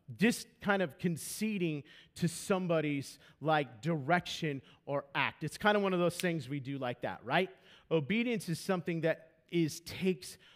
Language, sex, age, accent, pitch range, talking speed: English, male, 40-59, American, 155-200 Hz, 160 wpm